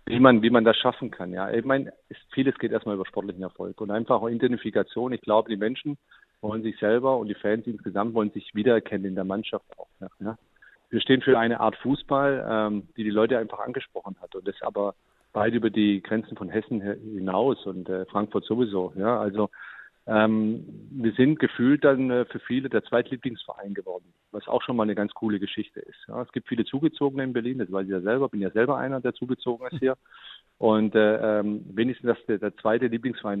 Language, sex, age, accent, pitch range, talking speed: German, male, 40-59, German, 105-125 Hz, 205 wpm